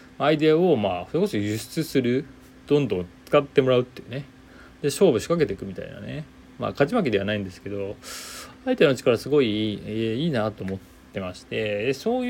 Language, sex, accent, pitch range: Japanese, male, native, 95-135 Hz